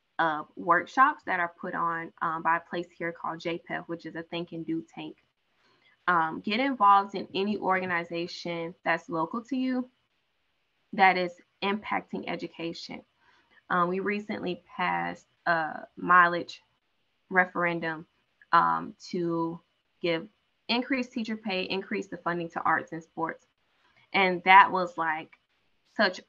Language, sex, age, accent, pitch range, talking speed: English, female, 20-39, American, 170-225 Hz, 135 wpm